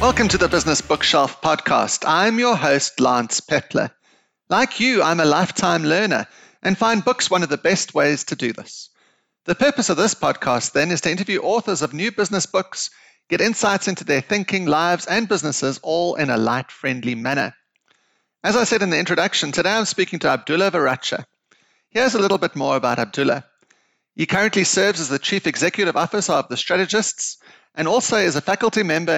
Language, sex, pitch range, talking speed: English, male, 145-205 Hz, 190 wpm